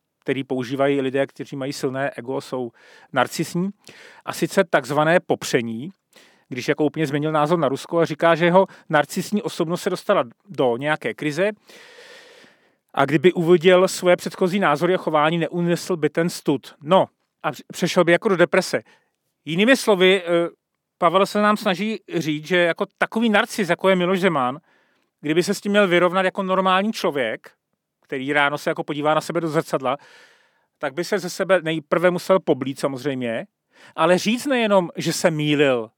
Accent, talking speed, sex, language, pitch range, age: native, 165 wpm, male, Czech, 150-195 Hz, 40-59